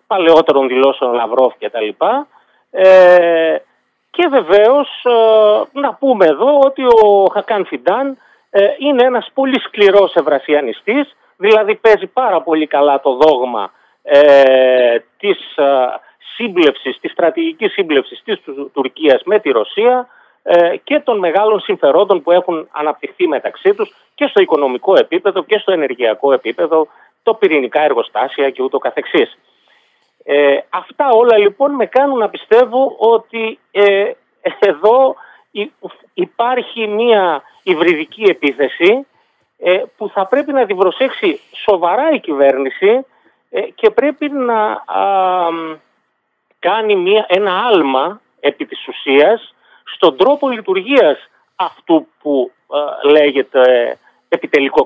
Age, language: 40-59, Greek